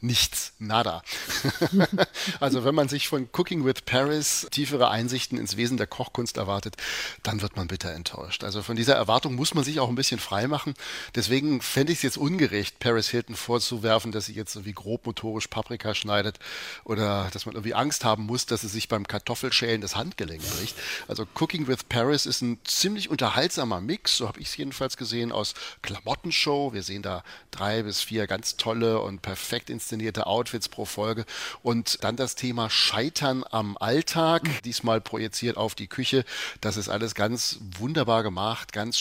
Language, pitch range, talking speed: German, 105-130 Hz, 175 wpm